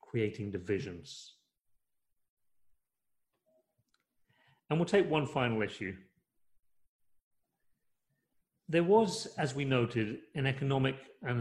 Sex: male